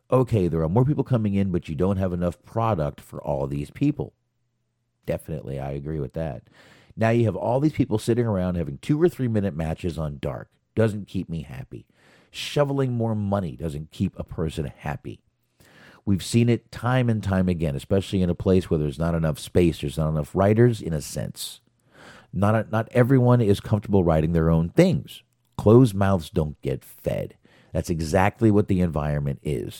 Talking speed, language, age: 185 wpm, English, 50-69